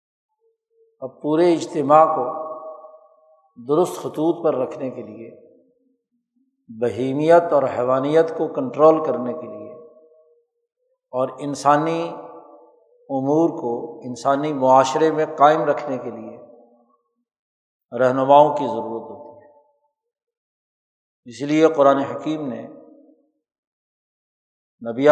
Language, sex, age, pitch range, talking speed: Urdu, male, 60-79, 135-170 Hz, 95 wpm